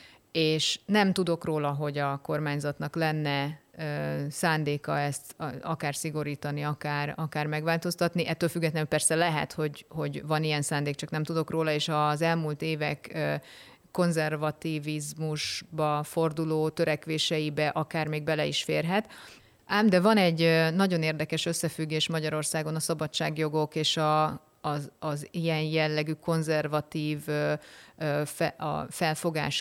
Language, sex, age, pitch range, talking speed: Hungarian, female, 30-49, 150-165 Hz, 120 wpm